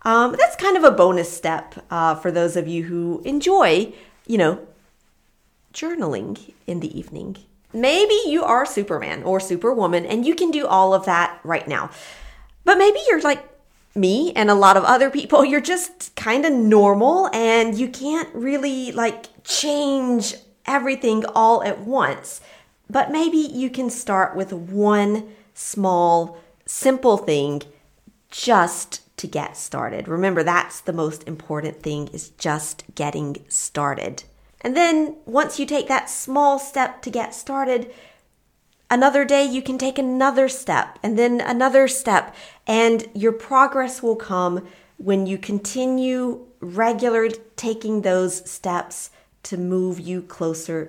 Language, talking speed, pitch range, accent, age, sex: English, 145 wpm, 180-270 Hz, American, 40-59, female